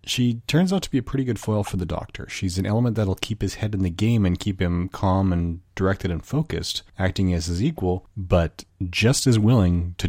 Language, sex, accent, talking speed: English, male, American, 230 wpm